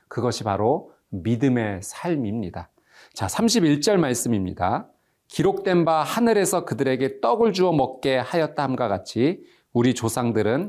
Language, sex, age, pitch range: Korean, male, 40-59, 115-175 Hz